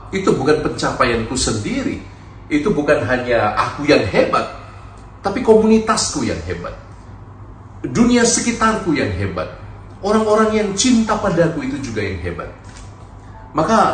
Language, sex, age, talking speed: Indonesian, male, 40-59, 120 wpm